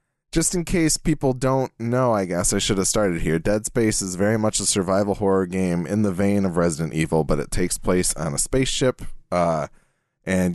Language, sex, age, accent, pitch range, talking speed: English, male, 20-39, American, 90-115 Hz, 210 wpm